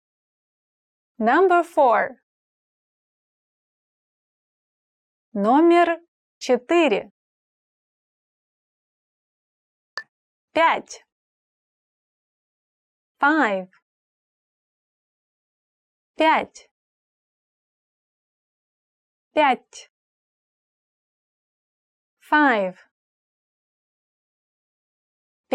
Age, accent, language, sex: 30-49, American, English, female